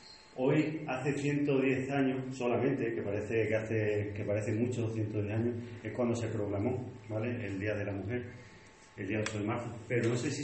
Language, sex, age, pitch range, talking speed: Spanish, male, 30-49, 110-130 Hz, 190 wpm